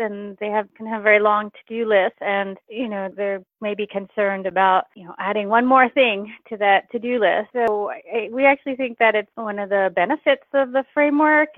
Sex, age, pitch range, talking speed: female, 30-49, 175-215 Hz, 225 wpm